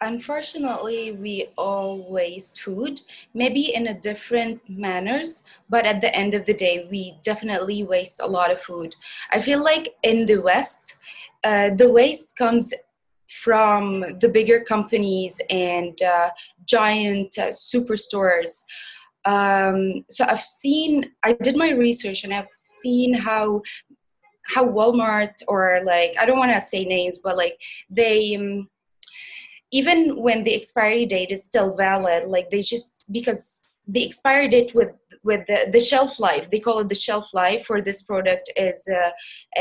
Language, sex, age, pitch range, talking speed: English, female, 20-39, 195-235 Hz, 150 wpm